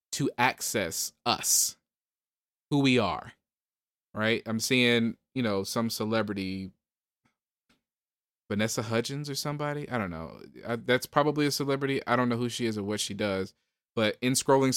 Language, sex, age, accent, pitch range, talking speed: English, male, 20-39, American, 115-145 Hz, 150 wpm